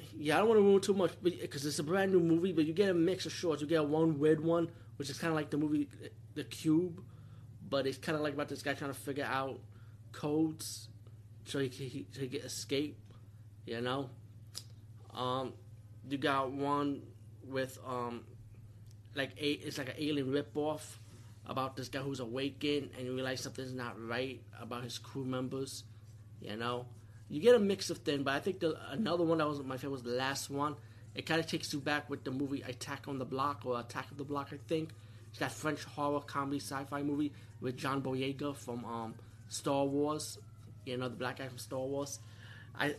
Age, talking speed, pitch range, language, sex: 20-39, 210 wpm, 115-150 Hz, English, male